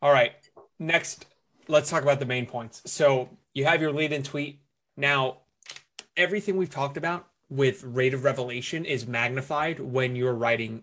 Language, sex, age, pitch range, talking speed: English, male, 20-39, 125-155 Hz, 165 wpm